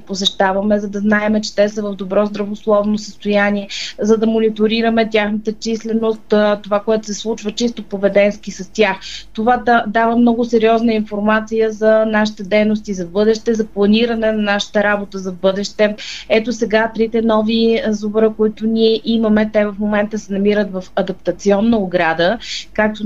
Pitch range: 205-230 Hz